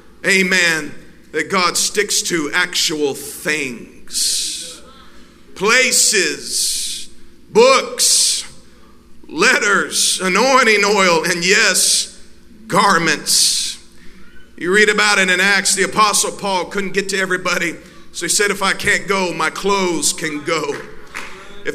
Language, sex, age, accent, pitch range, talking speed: English, male, 50-69, American, 195-270 Hz, 110 wpm